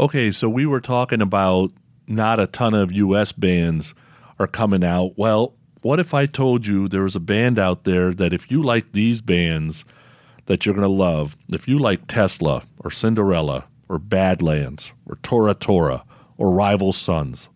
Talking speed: 180 wpm